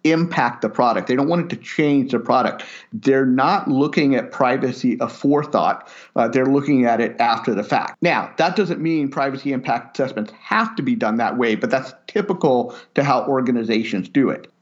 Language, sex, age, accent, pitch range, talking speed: English, male, 50-69, American, 120-160 Hz, 190 wpm